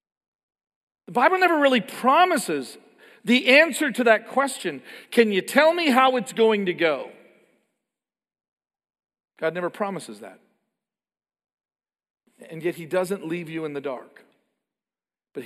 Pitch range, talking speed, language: 145-210 Hz, 130 wpm, English